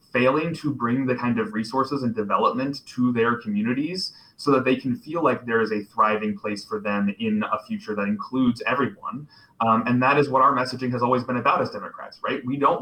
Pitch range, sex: 110-150 Hz, male